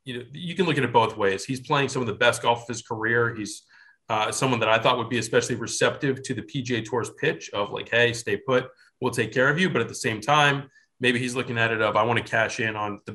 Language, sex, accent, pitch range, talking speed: English, male, American, 110-130 Hz, 285 wpm